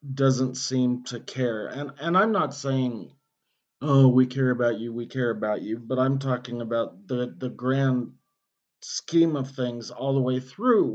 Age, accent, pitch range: 40-59, American, 115-135 Hz